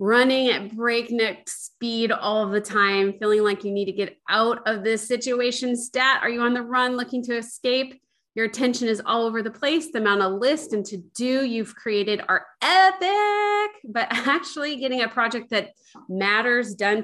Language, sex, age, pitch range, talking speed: English, female, 30-49, 200-250 Hz, 180 wpm